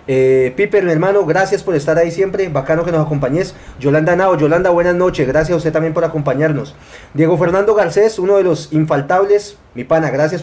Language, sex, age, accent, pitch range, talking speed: Spanish, male, 30-49, Colombian, 150-200 Hz, 195 wpm